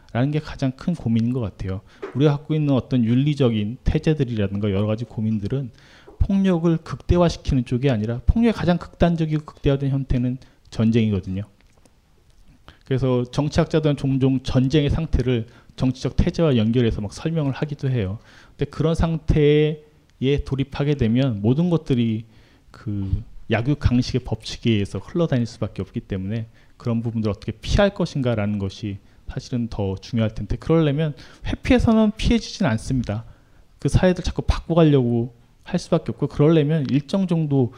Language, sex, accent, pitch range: Korean, male, native, 115-155 Hz